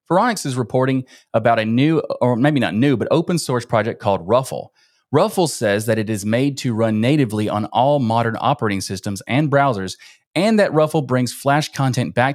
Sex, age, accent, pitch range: male, 30-49, American, 115-150 Hz